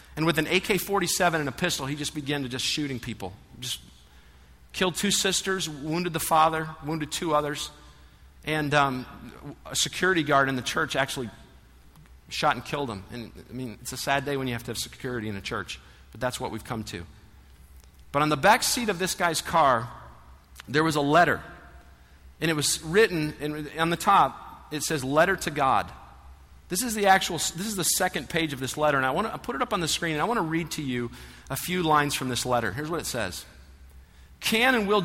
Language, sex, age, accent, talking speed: English, male, 50-69, American, 220 wpm